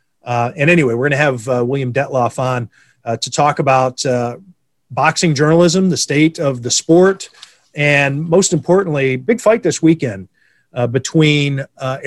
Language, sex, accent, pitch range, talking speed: English, male, American, 125-160 Hz, 160 wpm